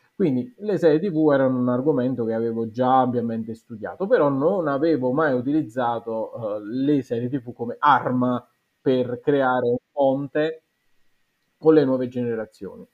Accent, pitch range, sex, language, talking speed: native, 120-145 Hz, male, Italian, 140 wpm